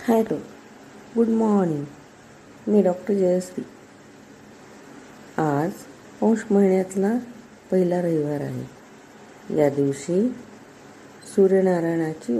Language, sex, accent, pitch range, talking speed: Marathi, female, native, 150-210 Hz, 75 wpm